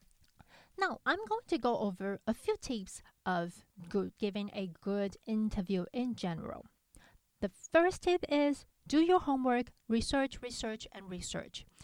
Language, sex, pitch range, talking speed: English, female, 185-280 Hz, 135 wpm